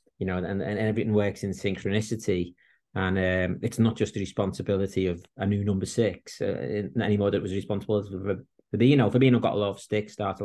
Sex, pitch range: male, 95-120 Hz